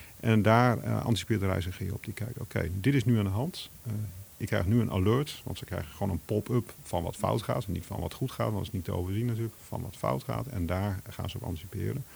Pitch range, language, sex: 95-115 Hz, Dutch, male